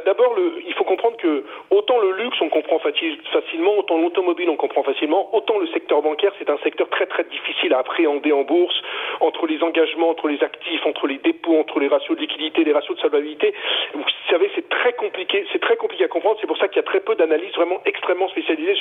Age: 40-59